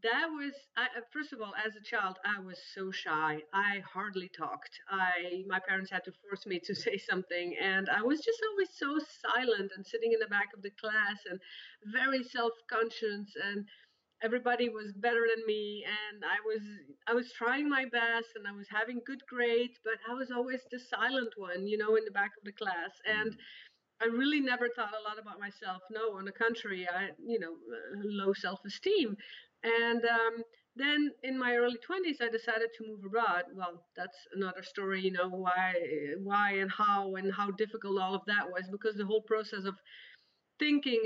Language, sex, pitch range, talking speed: English, female, 200-245 Hz, 195 wpm